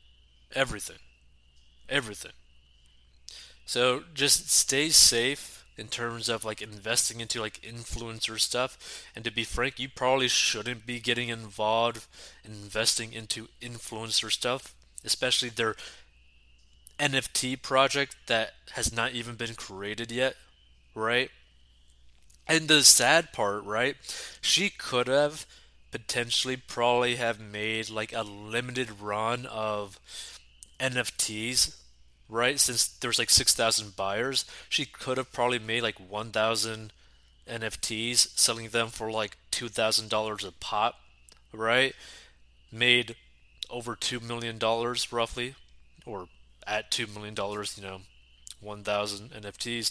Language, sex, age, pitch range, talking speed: English, male, 20-39, 100-120 Hz, 115 wpm